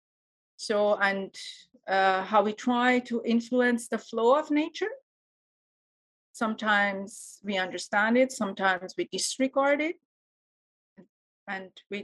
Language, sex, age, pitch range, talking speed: English, female, 40-59, 185-245 Hz, 110 wpm